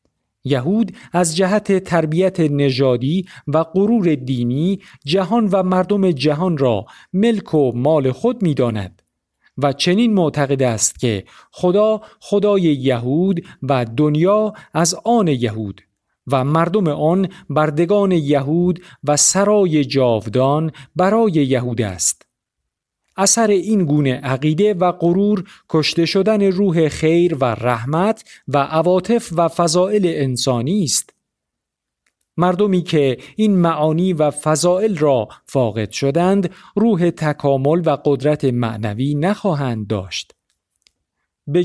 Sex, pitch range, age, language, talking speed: male, 135-190 Hz, 50-69, Persian, 110 wpm